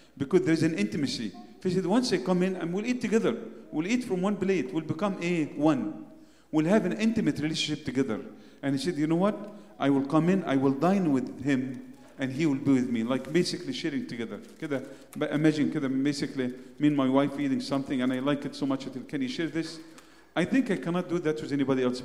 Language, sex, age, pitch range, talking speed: English, male, 40-59, 125-160 Hz, 220 wpm